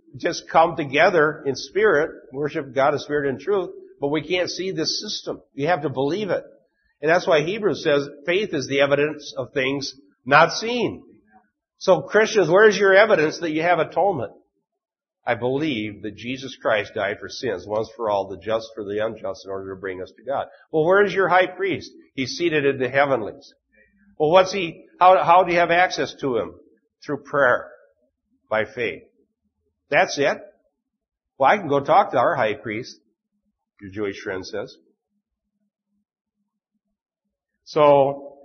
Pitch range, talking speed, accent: 130-205 Hz, 170 wpm, American